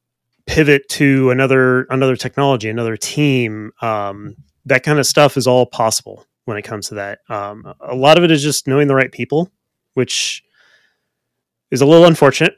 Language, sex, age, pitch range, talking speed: English, male, 30-49, 110-135 Hz, 170 wpm